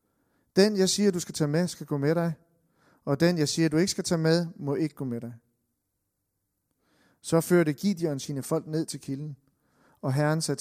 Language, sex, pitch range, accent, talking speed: Danish, male, 140-175 Hz, native, 205 wpm